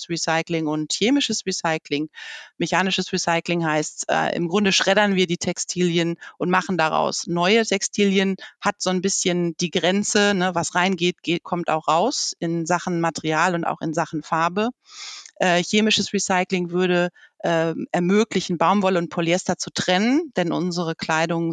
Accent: German